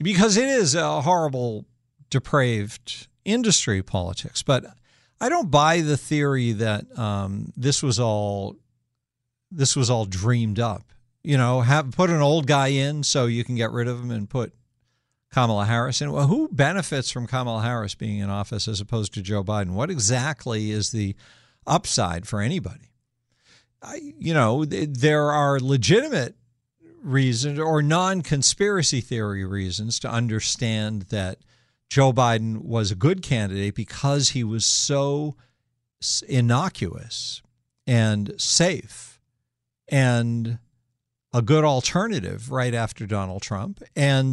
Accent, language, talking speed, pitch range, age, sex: American, English, 140 wpm, 115-140 Hz, 50-69, male